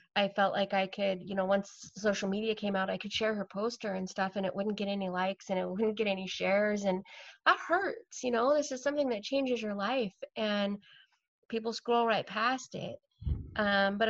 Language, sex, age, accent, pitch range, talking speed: English, female, 20-39, American, 185-215 Hz, 215 wpm